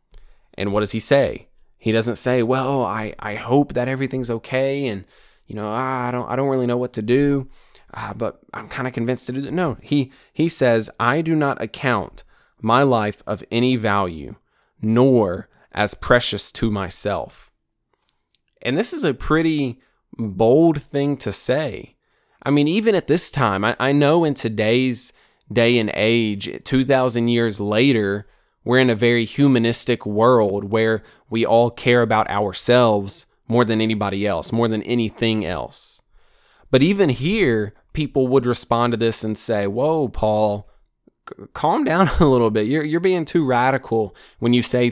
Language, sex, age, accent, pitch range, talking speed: English, male, 20-39, American, 110-140 Hz, 165 wpm